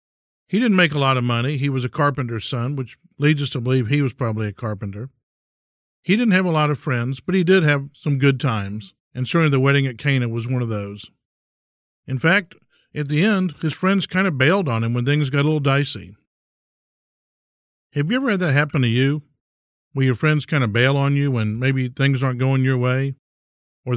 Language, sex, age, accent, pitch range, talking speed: English, male, 50-69, American, 120-155 Hz, 220 wpm